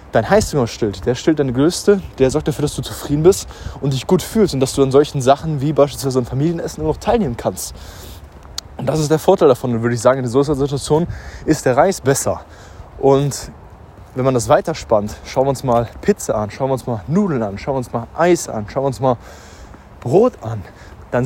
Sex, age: male, 20-39